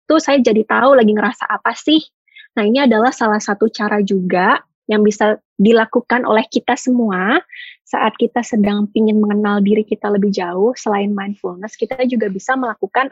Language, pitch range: Indonesian, 210-260 Hz